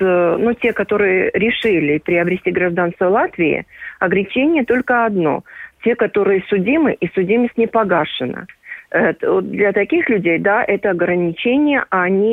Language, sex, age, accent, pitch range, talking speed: Russian, female, 40-59, native, 175-225 Hz, 125 wpm